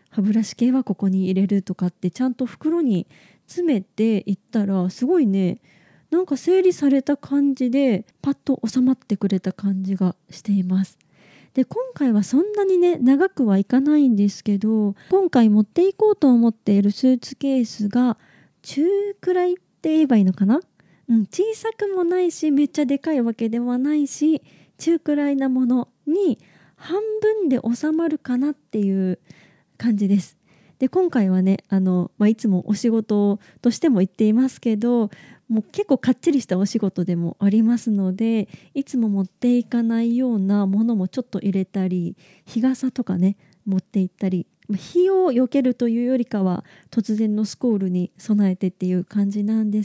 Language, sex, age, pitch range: Japanese, female, 20-39, 195-275 Hz